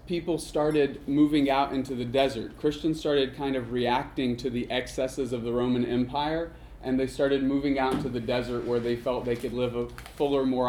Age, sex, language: 30-49, male, English